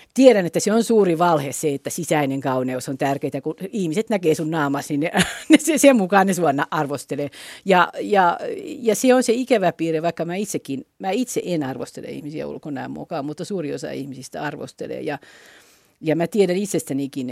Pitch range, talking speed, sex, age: 140-195 Hz, 185 wpm, female, 50-69